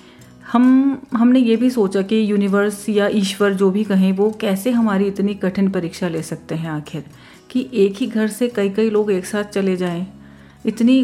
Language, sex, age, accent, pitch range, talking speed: Hindi, female, 30-49, native, 185-225 Hz, 190 wpm